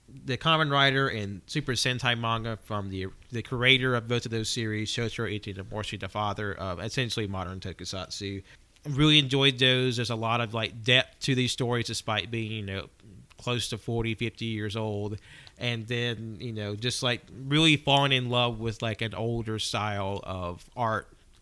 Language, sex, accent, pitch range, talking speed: English, male, American, 105-135 Hz, 175 wpm